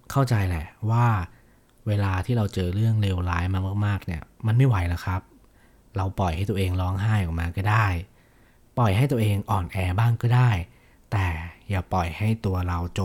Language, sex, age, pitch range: Thai, male, 20-39, 90-115 Hz